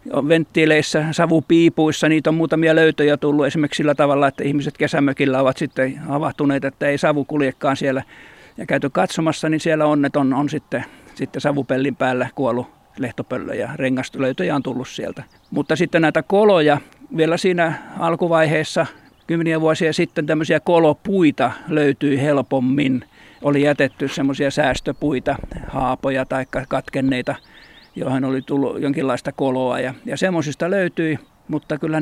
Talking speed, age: 135 wpm, 50-69